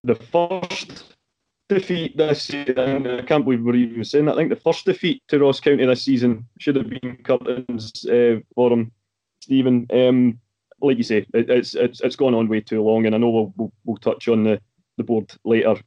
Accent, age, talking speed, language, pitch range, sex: British, 20-39, 195 wpm, English, 110-135 Hz, male